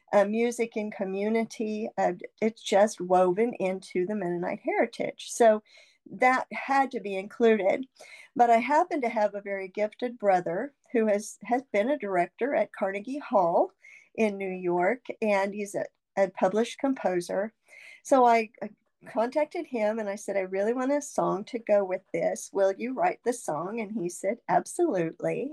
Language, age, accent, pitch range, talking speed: English, 50-69, American, 200-255 Hz, 165 wpm